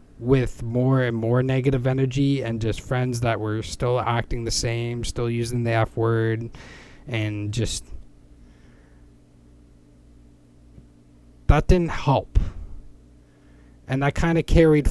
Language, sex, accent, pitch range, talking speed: English, male, American, 85-125 Hz, 120 wpm